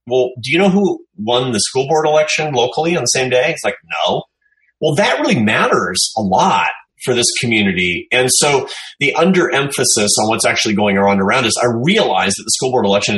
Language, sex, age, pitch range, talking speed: English, male, 30-49, 100-130 Hz, 215 wpm